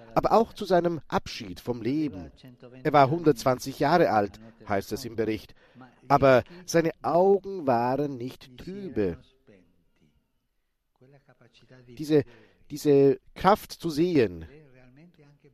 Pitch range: 125-170 Hz